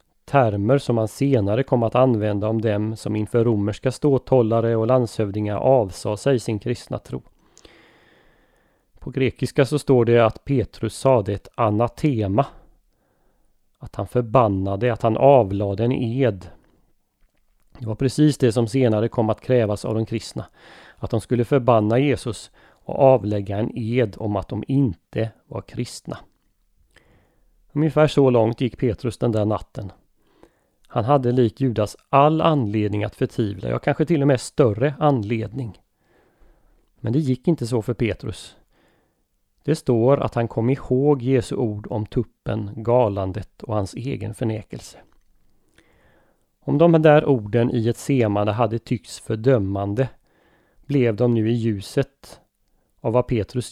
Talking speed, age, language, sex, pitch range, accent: 145 wpm, 30-49, Swedish, male, 105-130 Hz, native